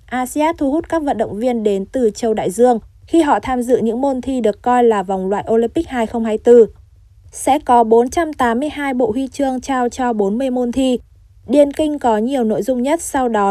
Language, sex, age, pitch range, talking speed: Vietnamese, female, 20-39, 220-275 Hz, 205 wpm